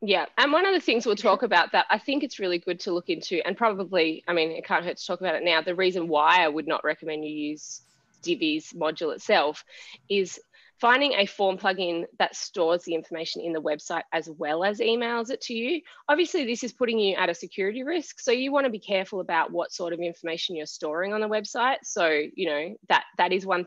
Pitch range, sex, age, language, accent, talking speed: 170-245 Hz, female, 20-39, English, Australian, 235 wpm